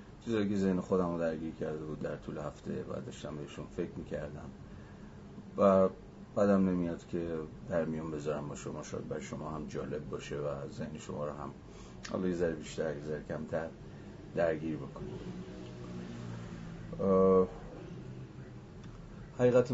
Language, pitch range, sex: Persian, 80-105 Hz, male